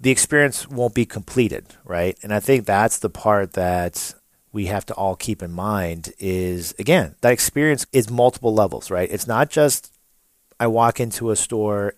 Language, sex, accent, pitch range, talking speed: English, male, American, 95-125 Hz, 180 wpm